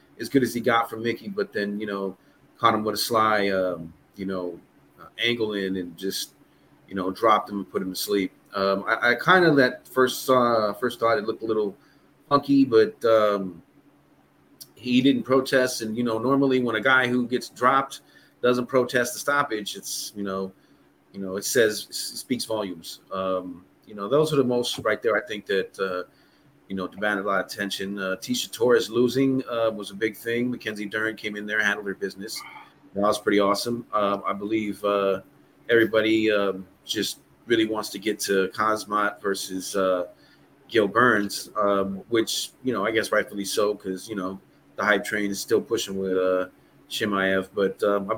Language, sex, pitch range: English, male, 95-120 Hz